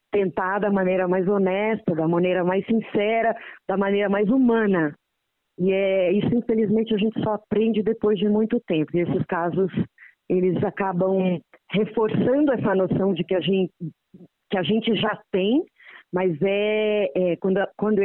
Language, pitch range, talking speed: Portuguese, 185-225 Hz, 155 wpm